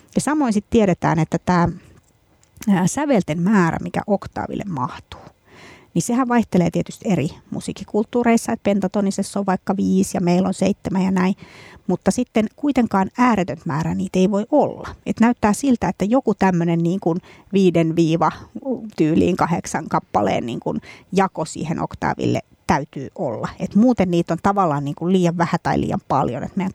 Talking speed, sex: 155 wpm, female